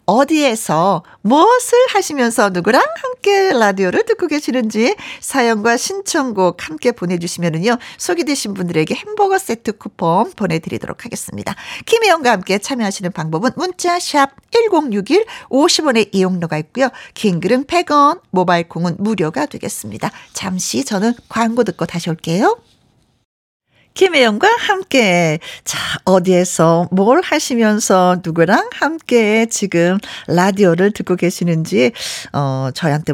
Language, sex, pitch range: Korean, female, 180-285 Hz